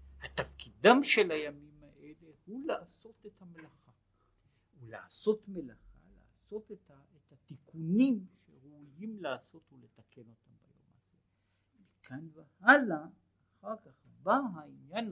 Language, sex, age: Hebrew, male, 60-79